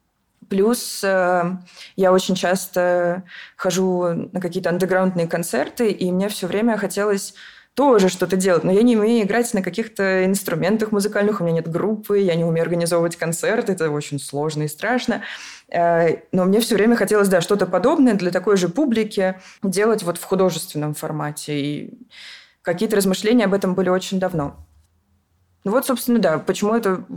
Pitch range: 170-205 Hz